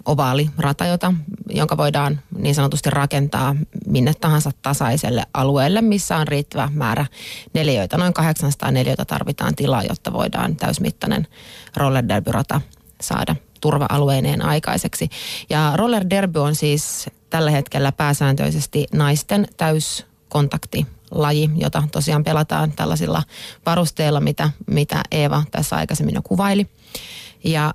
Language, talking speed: Finnish, 110 wpm